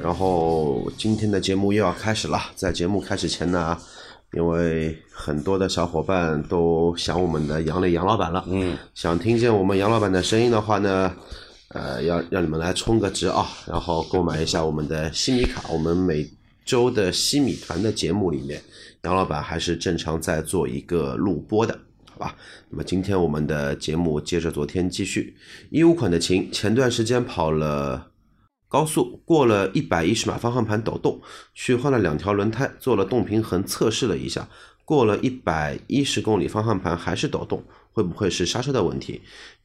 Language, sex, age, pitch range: Chinese, male, 30-49, 85-110 Hz